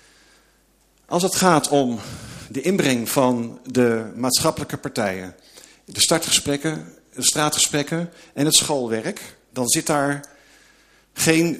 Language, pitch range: Dutch, 115-150 Hz